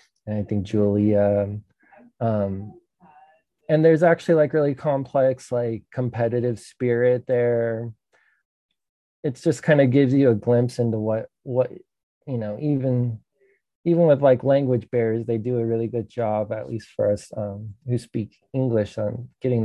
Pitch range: 110-125 Hz